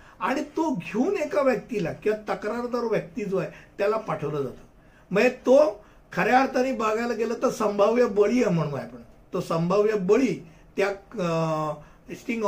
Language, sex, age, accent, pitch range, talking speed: Hindi, male, 60-79, native, 180-230 Hz, 120 wpm